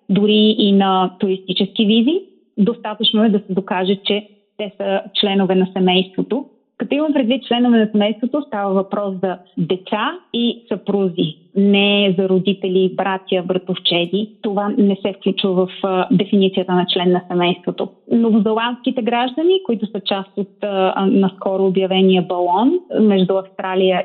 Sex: female